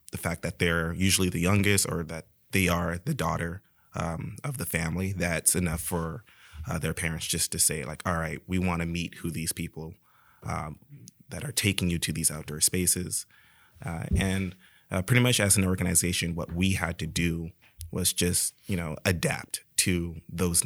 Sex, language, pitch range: male, English, 85-95 Hz